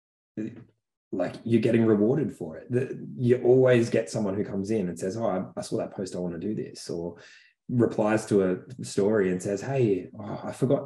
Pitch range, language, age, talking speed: 90-110 Hz, English, 20-39, 200 wpm